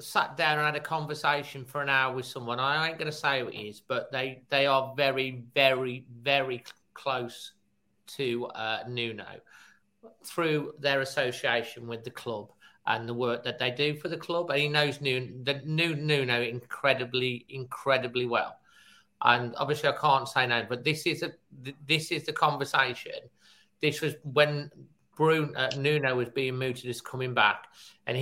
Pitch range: 125-150 Hz